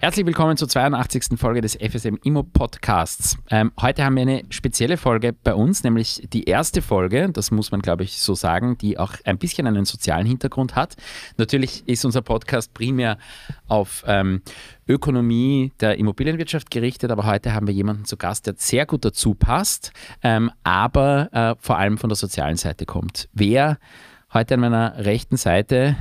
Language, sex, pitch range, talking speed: German, male, 100-130 Hz, 170 wpm